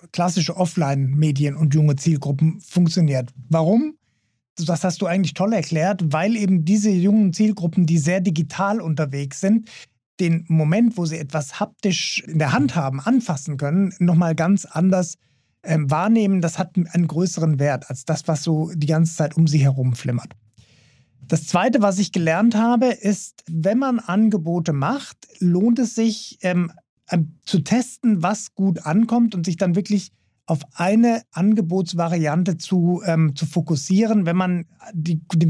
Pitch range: 150-195 Hz